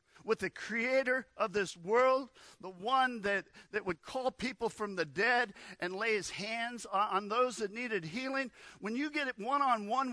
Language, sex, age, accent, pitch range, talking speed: English, male, 50-69, American, 185-260 Hz, 185 wpm